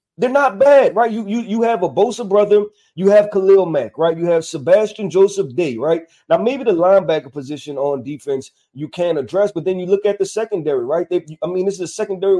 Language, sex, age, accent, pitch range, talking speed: English, male, 30-49, American, 155-195 Hz, 225 wpm